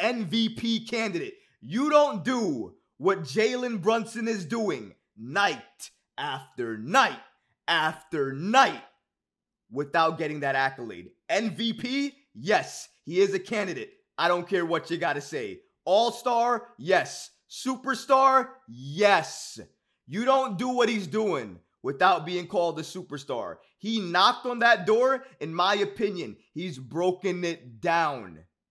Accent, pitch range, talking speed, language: American, 165-245 Hz, 125 wpm, English